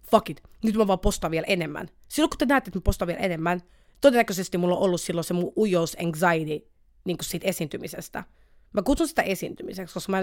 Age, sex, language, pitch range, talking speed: 30-49, female, Finnish, 165-215 Hz, 200 wpm